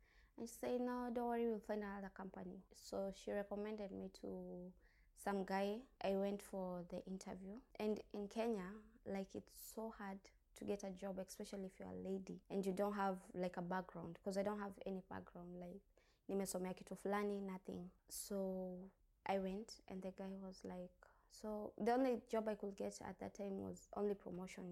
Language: English